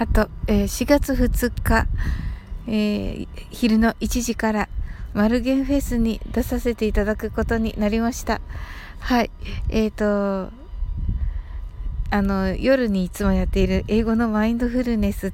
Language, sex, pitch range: Japanese, female, 180-225 Hz